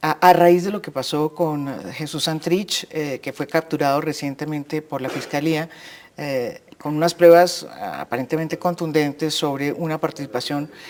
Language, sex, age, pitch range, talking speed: Spanish, female, 50-69, 145-180 Hz, 145 wpm